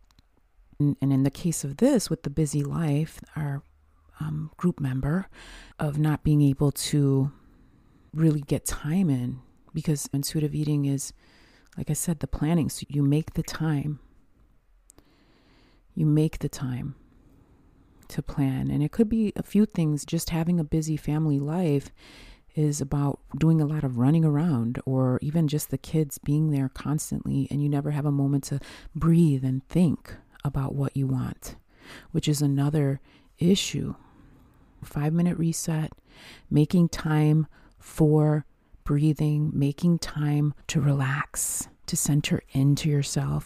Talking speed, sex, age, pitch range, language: 145 wpm, female, 30-49, 140-160 Hz, English